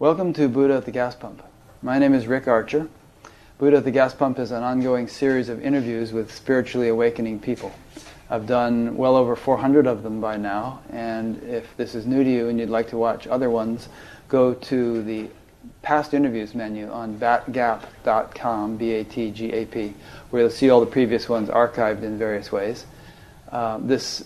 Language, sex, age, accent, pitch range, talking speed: English, male, 30-49, American, 115-130 Hz, 180 wpm